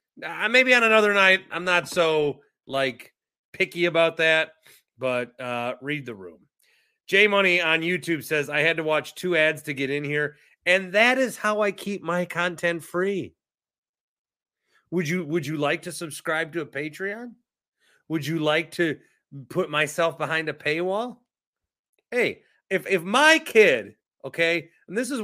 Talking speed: 165 wpm